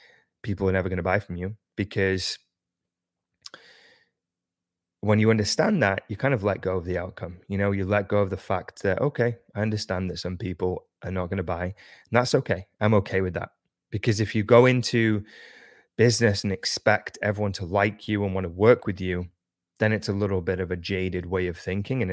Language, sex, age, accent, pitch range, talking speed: English, male, 20-39, British, 95-115 Hz, 210 wpm